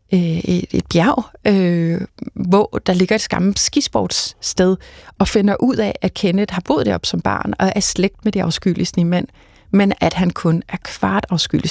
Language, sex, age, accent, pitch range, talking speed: Danish, female, 30-49, native, 165-200 Hz, 175 wpm